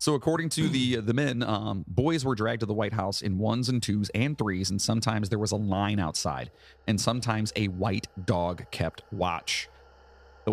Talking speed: 200 wpm